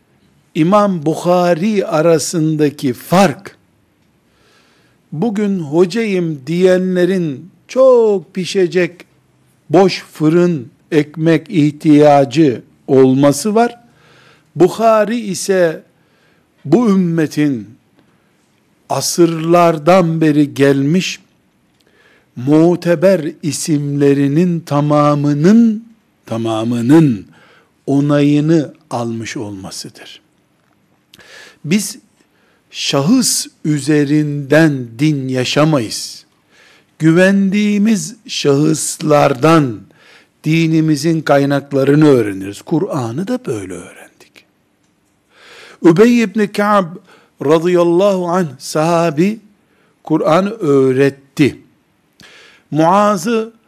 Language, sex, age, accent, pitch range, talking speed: Turkish, male, 60-79, native, 145-190 Hz, 60 wpm